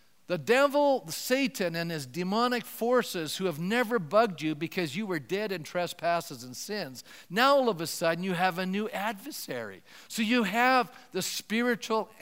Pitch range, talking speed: 165-215 Hz, 170 wpm